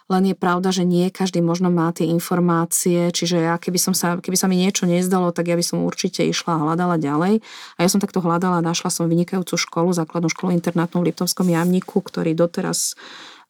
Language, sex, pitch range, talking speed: Slovak, female, 165-185 Hz, 210 wpm